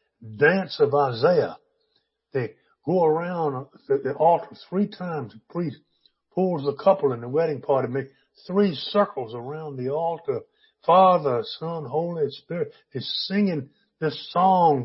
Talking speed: 140 wpm